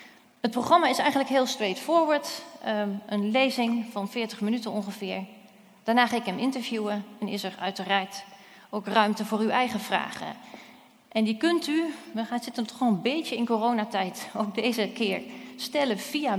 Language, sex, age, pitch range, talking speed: Dutch, female, 40-59, 205-250 Hz, 160 wpm